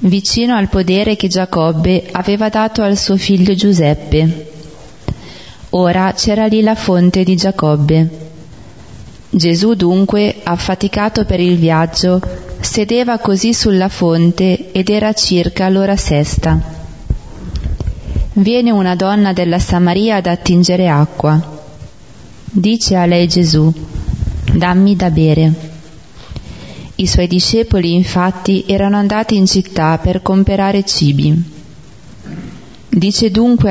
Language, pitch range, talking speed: Italian, 160-200 Hz, 110 wpm